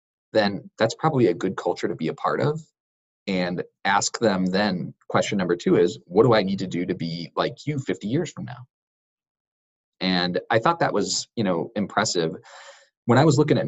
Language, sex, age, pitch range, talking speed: English, male, 20-39, 90-125 Hz, 200 wpm